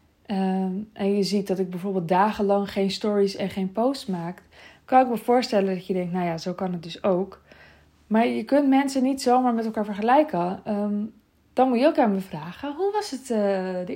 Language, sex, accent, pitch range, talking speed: Dutch, female, Dutch, 185-245 Hz, 205 wpm